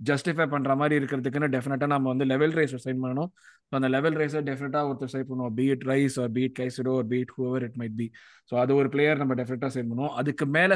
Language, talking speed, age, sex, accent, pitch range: Tamil, 180 wpm, 20-39, male, native, 130-160 Hz